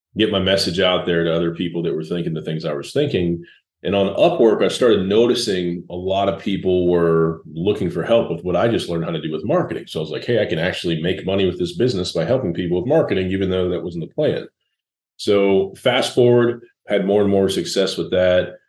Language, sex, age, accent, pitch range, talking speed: English, male, 30-49, American, 85-100 Hz, 240 wpm